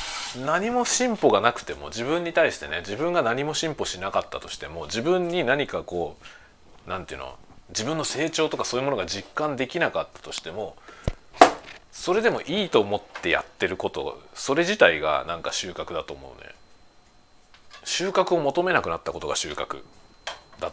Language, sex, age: Japanese, male, 40-59